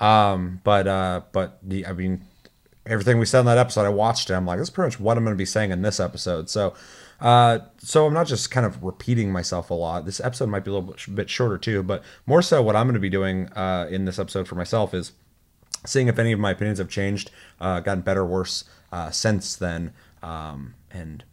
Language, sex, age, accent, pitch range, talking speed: English, male, 30-49, American, 95-120 Hz, 230 wpm